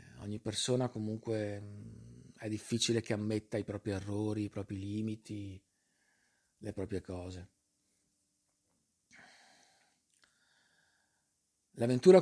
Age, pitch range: 40-59, 105-140 Hz